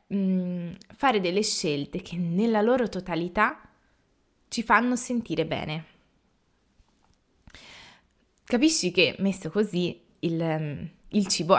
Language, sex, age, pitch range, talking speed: Italian, female, 20-39, 165-210 Hz, 90 wpm